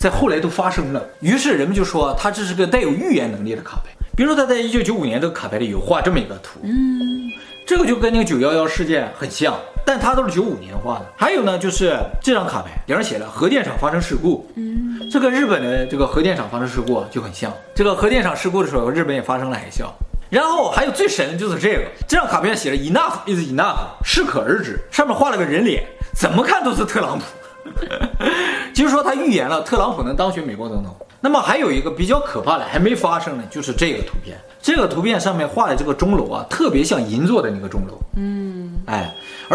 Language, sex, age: Chinese, male, 20-39